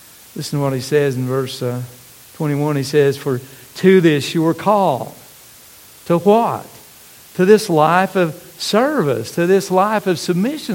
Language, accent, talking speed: English, American, 160 wpm